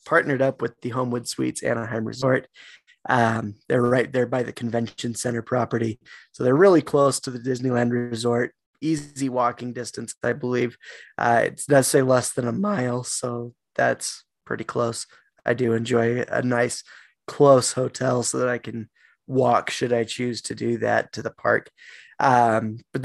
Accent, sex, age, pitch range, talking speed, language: American, male, 20-39, 115-135 Hz, 165 wpm, English